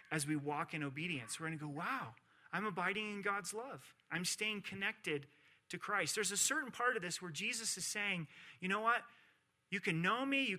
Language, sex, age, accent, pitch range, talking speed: English, male, 30-49, American, 145-195 Hz, 215 wpm